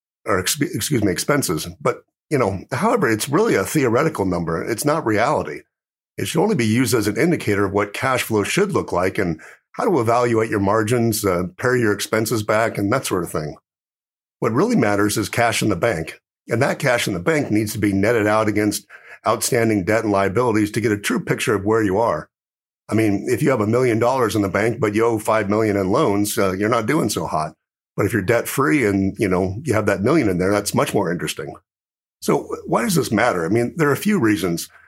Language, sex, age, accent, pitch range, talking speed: English, male, 50-69, American, 100-115 Hz, 230 wpm